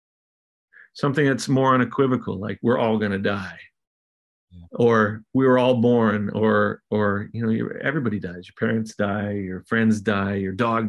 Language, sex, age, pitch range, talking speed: English, male, 40-59, 105-125 Hz, 160 wpm